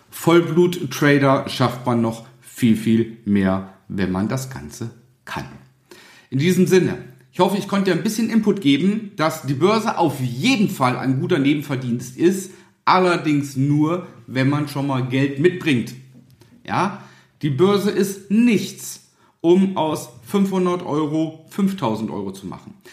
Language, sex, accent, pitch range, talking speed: German, male, German, 125-185 Hz, 145 wpm